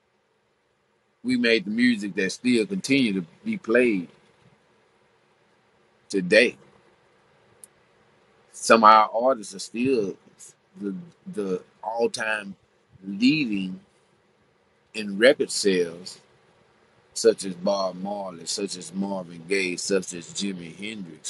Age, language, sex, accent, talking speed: 40-59, English, male, American, 100 wpm